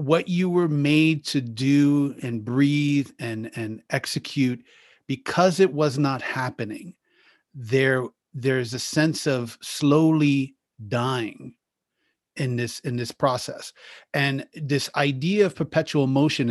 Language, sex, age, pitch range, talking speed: English, male, 30-49, 125-155 Hz, 125 wpm